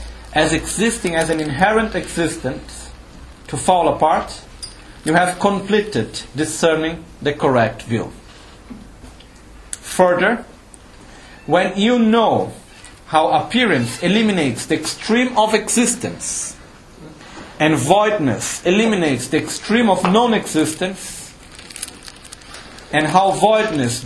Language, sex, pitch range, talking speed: Italian, male, 135-190 Hz, 90 wpm